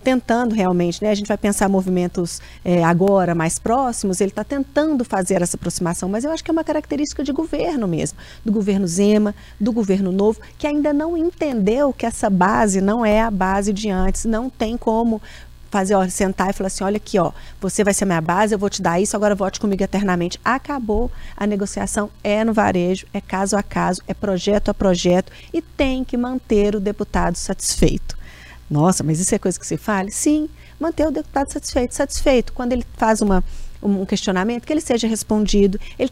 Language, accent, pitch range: Portuguese, Brazilian, 195-260 Hz